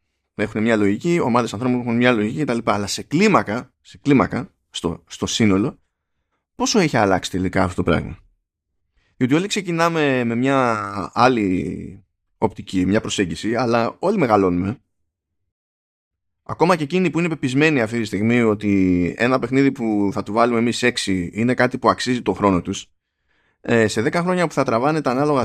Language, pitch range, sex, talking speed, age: Greek, 95-140 Hz, male, 165 wpm, 20-39